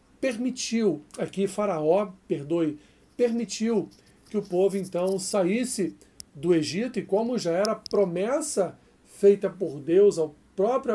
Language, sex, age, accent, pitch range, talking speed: Portuguese, male, 40-59, Brazilian, 185-225 Hz, 120 wpm